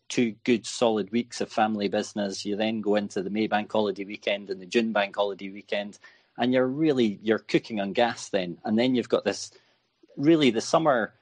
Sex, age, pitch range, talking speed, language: male, 30-49, 100-115 Hz, 205 wpm, English